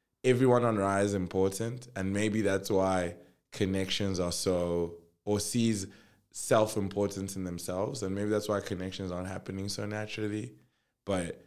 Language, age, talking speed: English, 20-39, 145 wpm